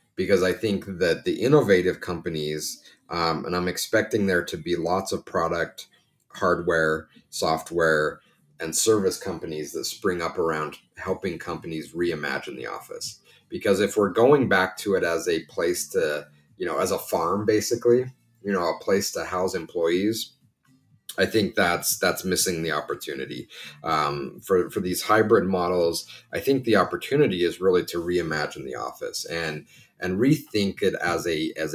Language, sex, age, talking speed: English, male, 30-49, 160 wpm